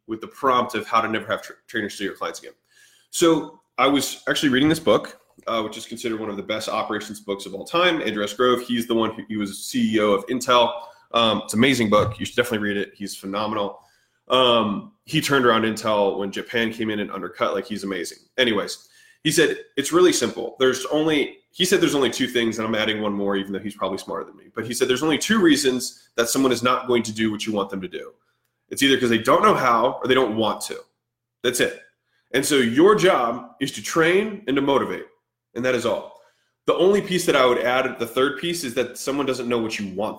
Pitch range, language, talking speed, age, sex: 105-135 Hz, English, 245 wpm, 20-39, male